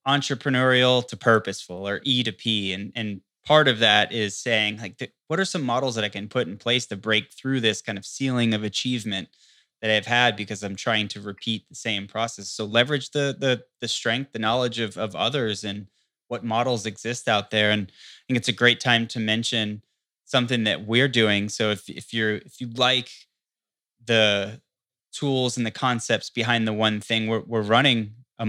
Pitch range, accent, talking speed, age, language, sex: 105-120 Hz, American, 200 wpm, 20-39, English, male